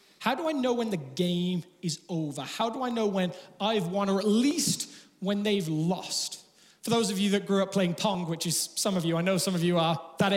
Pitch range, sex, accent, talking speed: 175-230 Hz, male, British, 250 wpm